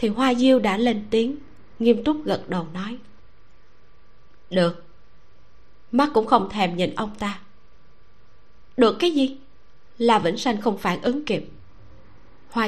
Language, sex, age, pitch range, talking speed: Vietnamese, female, 20-39, 185-255 Hz, 140 wpm